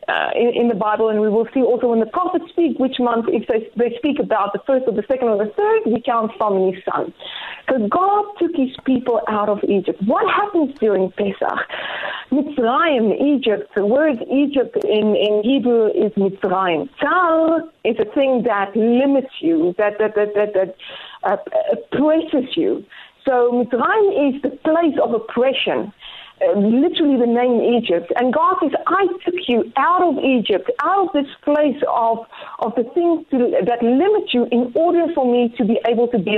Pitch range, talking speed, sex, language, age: 220-295 Hz, 185 wpm, female, English, 40-59